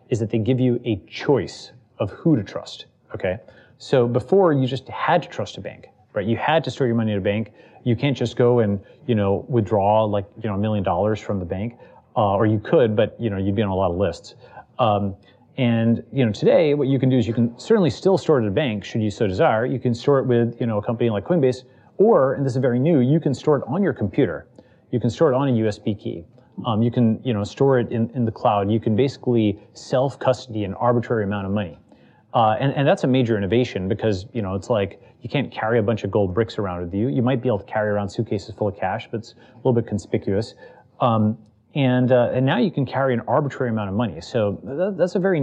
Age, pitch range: 30-49, 105-130 Hz